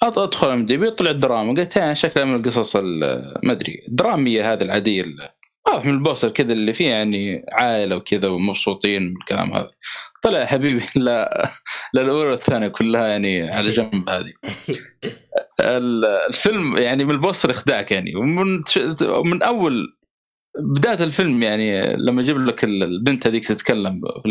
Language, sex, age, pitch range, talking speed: Arabic, male, 20-39, 105-155 Hz, 145 wpm